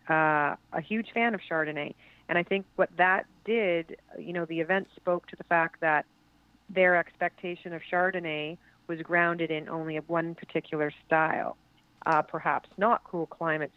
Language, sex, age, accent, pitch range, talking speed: English, female, 30-49, American, 155-180 Hz, 165 wpm